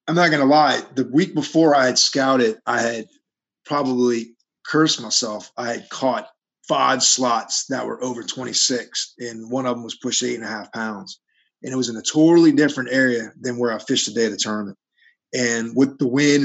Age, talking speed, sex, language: 30-49, 210 wpm, male, English